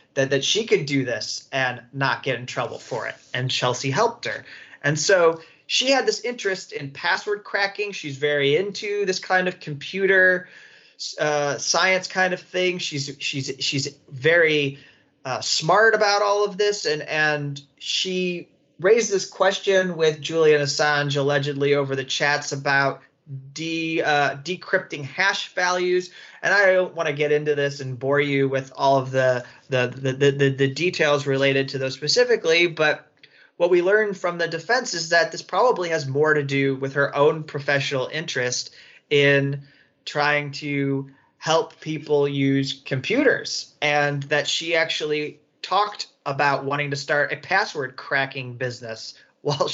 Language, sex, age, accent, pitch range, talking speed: English, male, 30-49, American, 140-180 Hz, 160 wpm